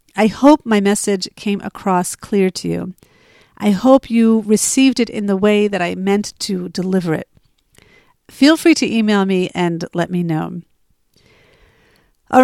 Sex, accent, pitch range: female, American, 185-235 Hz